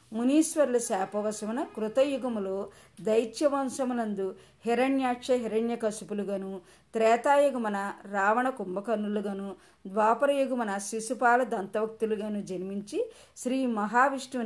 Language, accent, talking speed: Telugu, native, 70 wpm